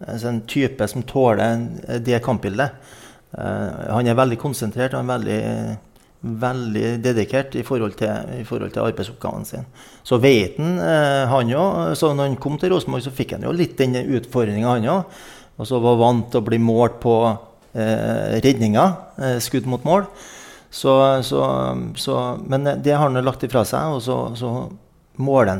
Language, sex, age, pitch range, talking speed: English, male, 30-49, 110-135 Hz, 165 wpm